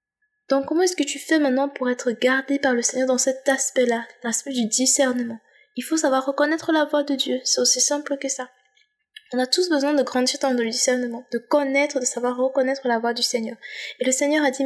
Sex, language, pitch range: female, French, 240-280 Hz